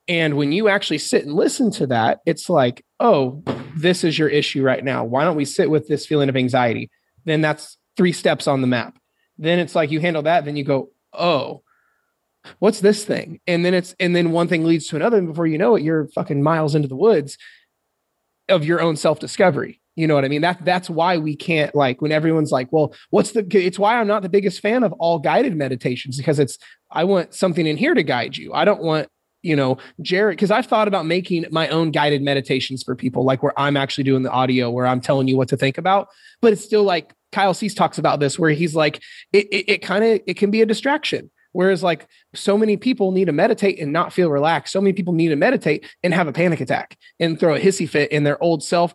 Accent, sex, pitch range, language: American, male, 145-190 Hz, English